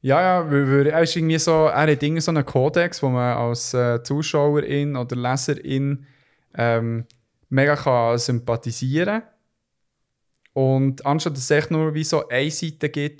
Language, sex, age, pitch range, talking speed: German, male, 20-39, 125-145 Hz, 155 wpm